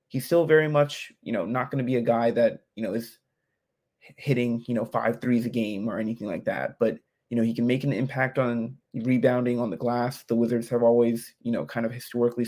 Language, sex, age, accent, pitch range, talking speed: English, male, 20-39, American, 115-130 Hz, 235 wpm